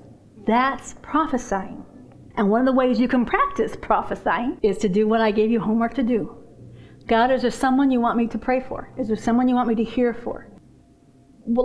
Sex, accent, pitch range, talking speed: female, American, 220-265 Hz, 210 wpm